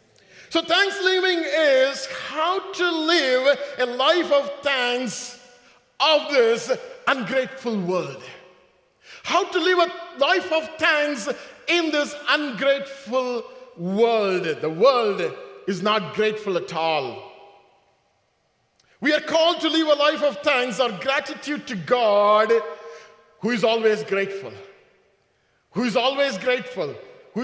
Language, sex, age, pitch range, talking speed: English, male, 50-69, 220-300 Hz, 120 wpm